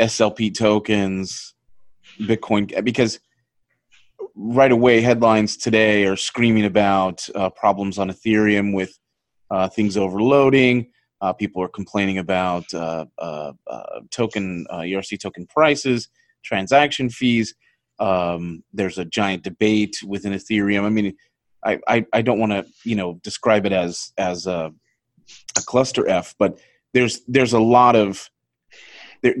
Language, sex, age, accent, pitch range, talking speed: English, male, 30-49, American, 95-115 Hz, 135 wpm